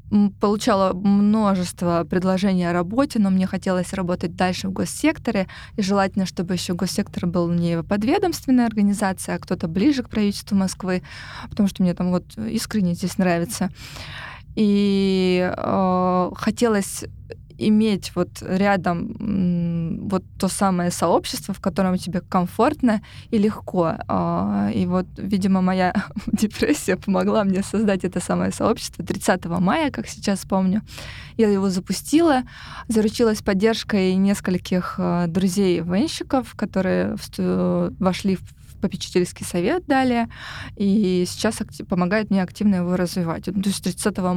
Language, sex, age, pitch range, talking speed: Russian, female, 20-39, 180-210 Hz, 125 wpm